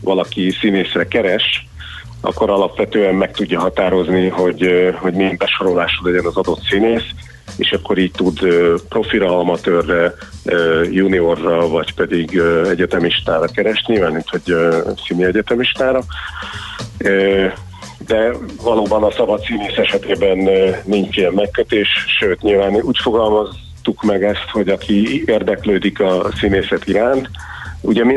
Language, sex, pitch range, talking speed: Hungarian, male, 90-100 Hz, 115 wpm